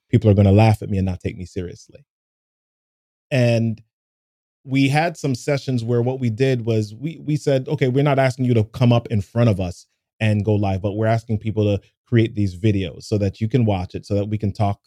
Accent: American